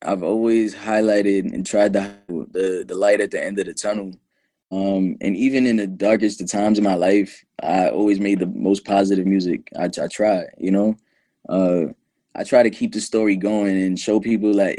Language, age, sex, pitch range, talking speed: English, 20-39, male, 95-110 Hz, 200 wpm